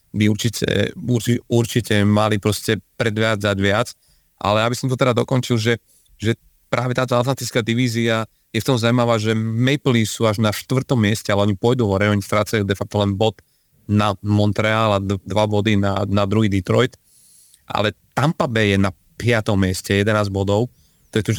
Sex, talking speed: male, 170 wpm